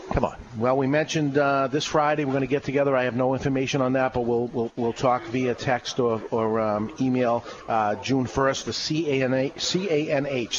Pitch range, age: 120-150 Hz, 40-59